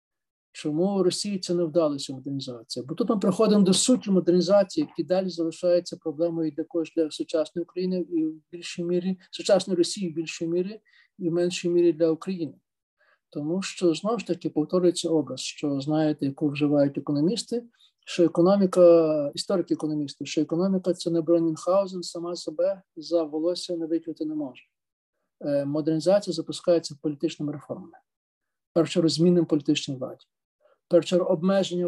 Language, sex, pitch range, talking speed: Ukrainian, male, 150-175 Hz, 140 wpm